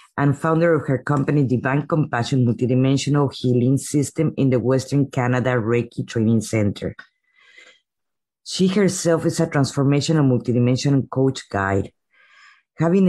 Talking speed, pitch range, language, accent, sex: 120 wpm, 125-150 Hz, English, Mexican, female